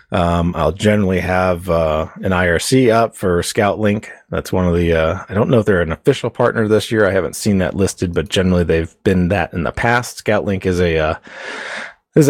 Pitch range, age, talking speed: 90-110 Hz, 30-49, 210 wpm